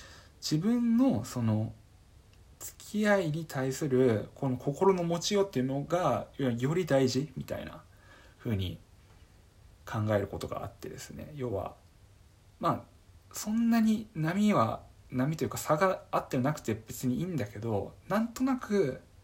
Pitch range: 100-140 Hz